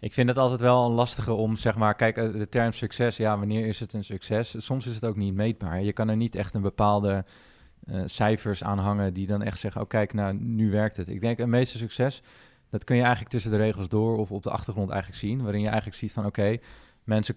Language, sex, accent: Dutch, male, Dutch